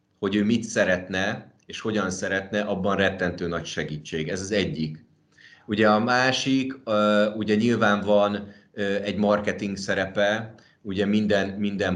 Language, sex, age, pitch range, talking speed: Hungarian, male, 30-49, 90-105 Hz, 130 wpm